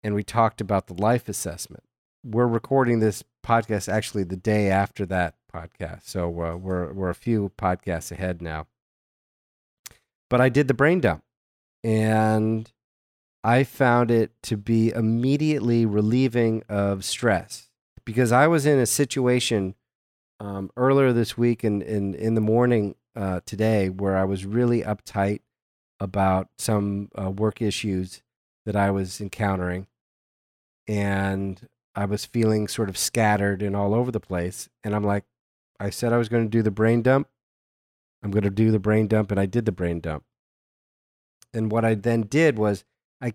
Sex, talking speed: male, 165 wpm